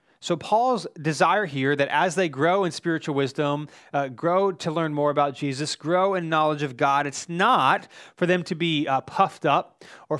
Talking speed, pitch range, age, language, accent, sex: 195 wpm, 145-185 Hz, 30-49, English, American, male